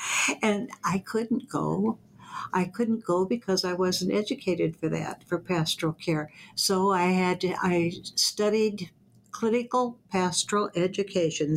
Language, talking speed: English, 130 wpm